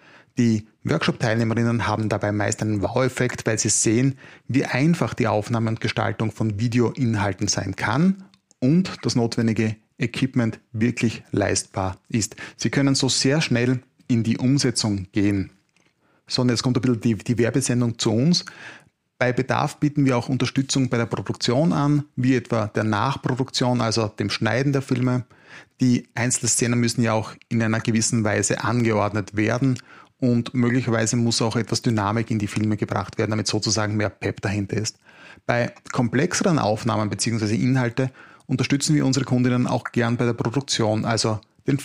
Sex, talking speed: male, 160 wpm